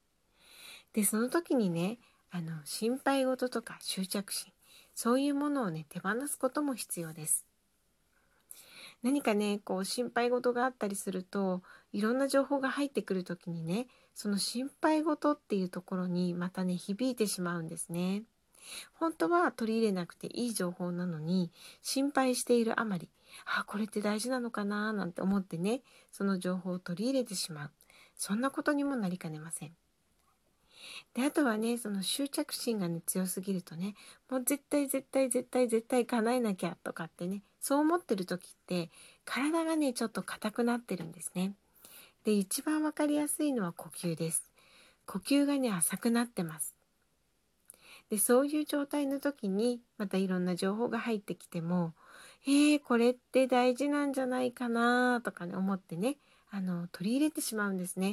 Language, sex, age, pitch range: Japanese, female, 40-59, 185-265 Hz